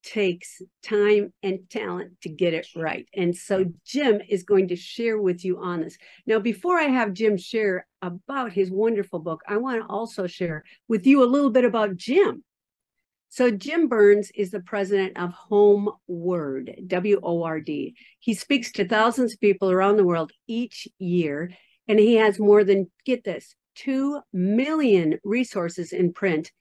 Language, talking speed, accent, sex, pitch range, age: English, 165 wpm, American, female, 180-240 Hz, 50-69